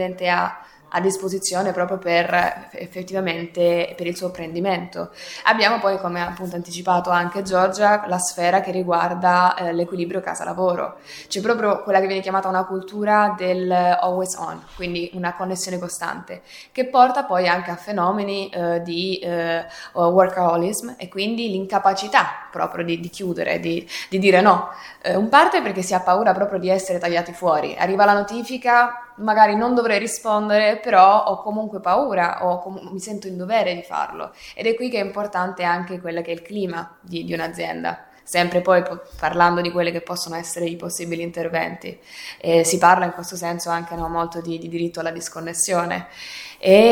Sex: female